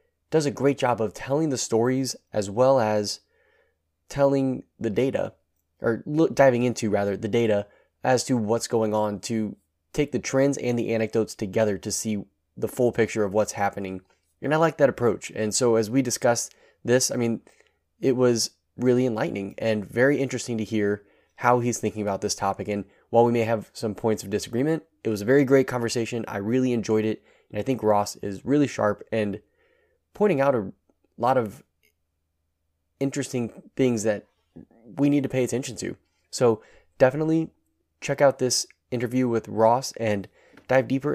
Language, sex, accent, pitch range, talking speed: English, male, American, 105-130 Hz, 175 wpm